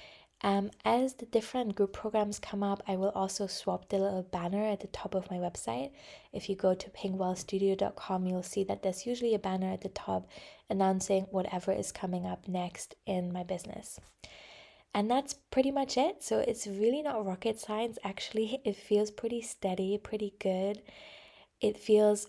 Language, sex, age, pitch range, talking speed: English, female, 20-39, 185-215 Hz, 175 wpm